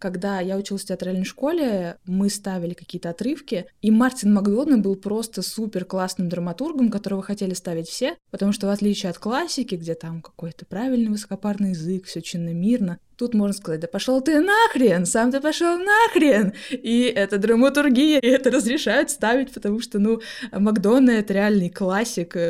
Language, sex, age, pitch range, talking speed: Russian, female, 20-39, 180-215 Hz, 165 wpm